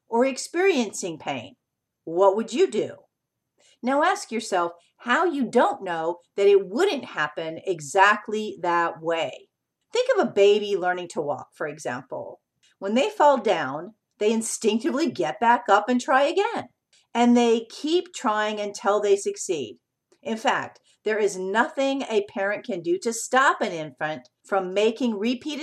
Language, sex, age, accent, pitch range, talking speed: English, female, 50-69, American, 200-270 Hz, 150 wpm